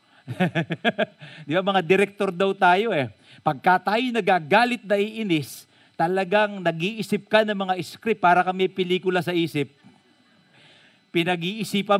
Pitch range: 135-195 Hz